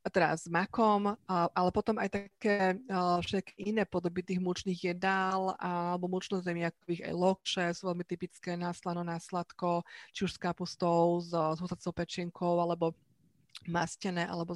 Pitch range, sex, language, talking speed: 170-200 Hz, female, Slovak, 130 wpm